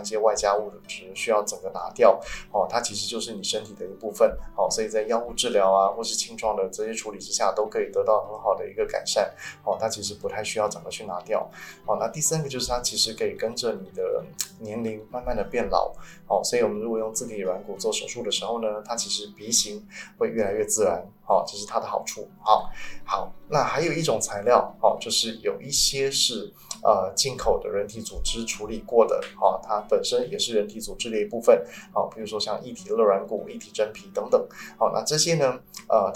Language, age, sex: Chinese, 20-39, male